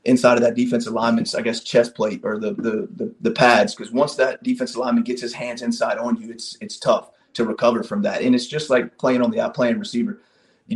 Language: English